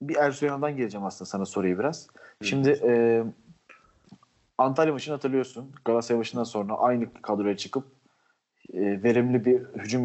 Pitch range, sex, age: 115-145 Hz, male, 40-59